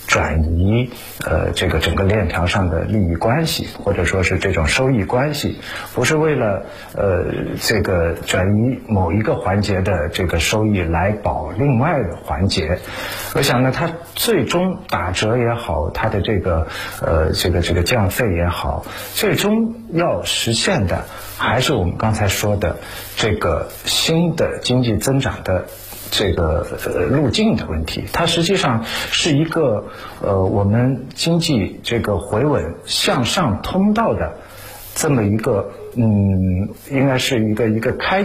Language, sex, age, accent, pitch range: Chinese, male, 50-69, native, 95-125 Hz